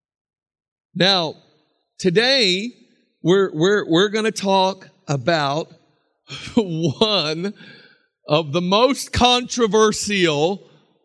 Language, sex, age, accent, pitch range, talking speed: English, male, 50-69, American, 165-230 Hz, 75 wpm